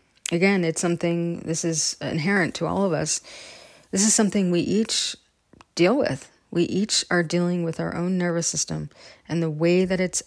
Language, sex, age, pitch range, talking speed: English, female, 30-49, 160-185 Hz, 180 wpm